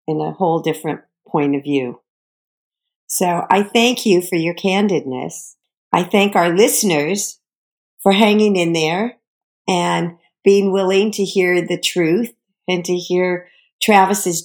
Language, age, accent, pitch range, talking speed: English, 50-69, American, 180-235 Hz, 135 wpm